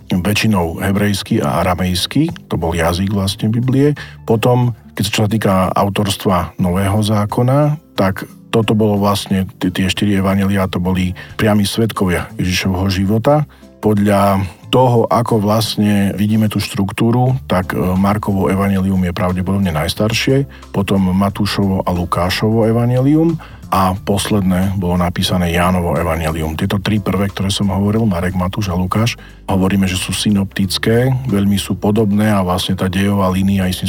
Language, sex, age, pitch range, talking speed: Slovak, male, 40-59, 95-110 Hz, 135 wpm